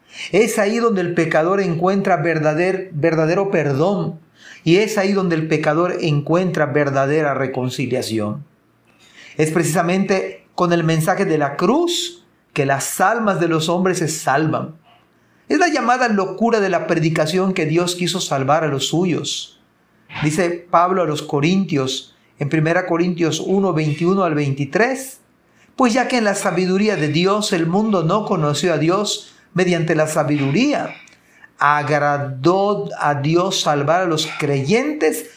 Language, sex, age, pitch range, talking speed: Spanish, male, 40-59, 155-195 Hz, 145 wpm